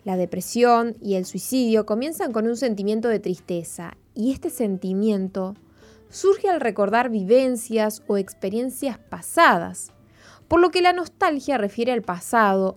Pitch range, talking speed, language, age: 195-260 Hz, 135 wpm, Spanish, 20-39